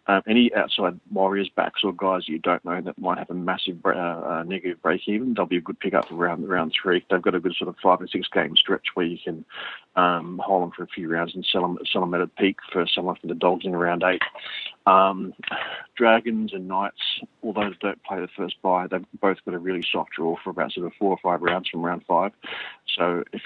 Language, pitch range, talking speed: English, 90-100 Hz, 240 wpm